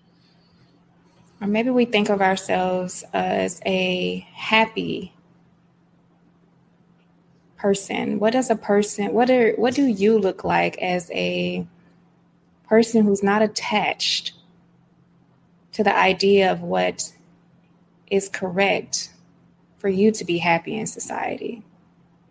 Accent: American